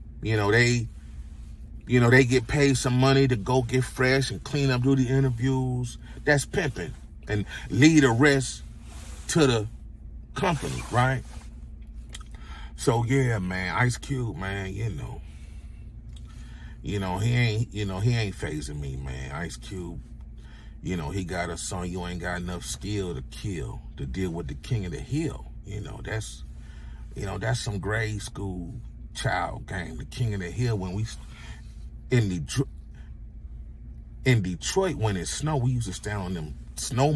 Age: 40-59